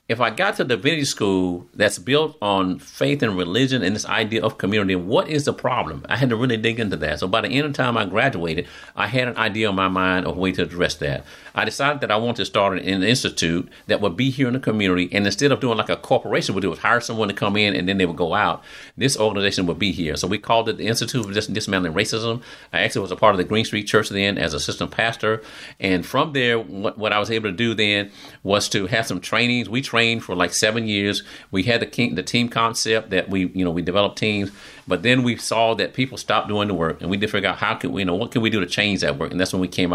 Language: English